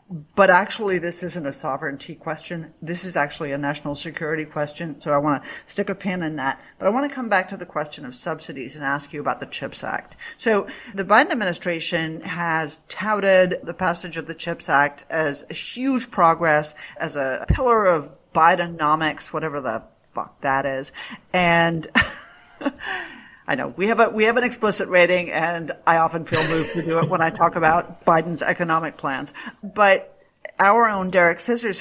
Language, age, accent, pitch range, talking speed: English, 50-69, American, 155-195 Hz, 185 wpm